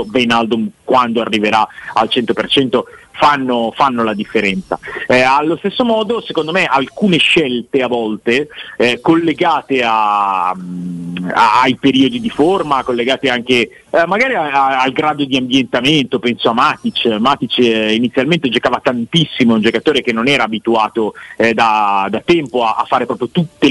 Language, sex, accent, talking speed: Italian, male, native, 150 wpm